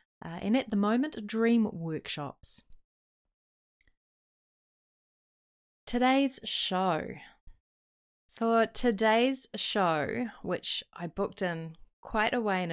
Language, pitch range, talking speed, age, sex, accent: English, 160-210 Hz, 95 wpm, 20-39, female, Australian